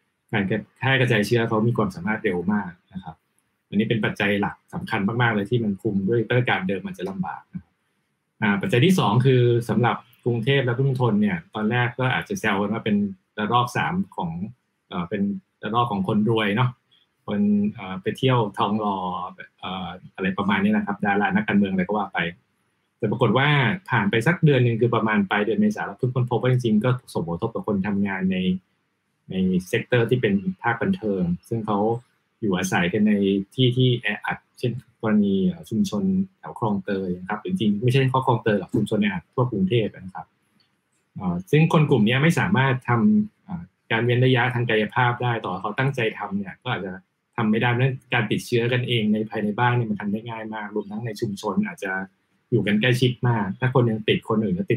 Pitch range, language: 105-150 Hz, Thai